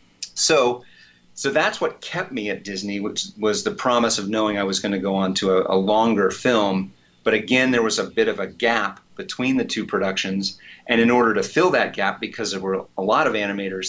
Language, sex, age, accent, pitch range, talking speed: English, male, 30-49, American, 95-110 Hz, 225 wpm